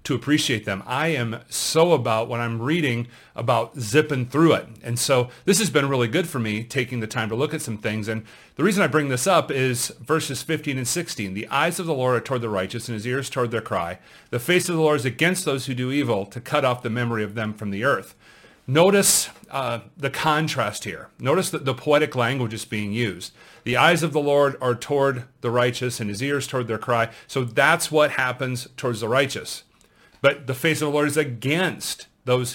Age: 40-59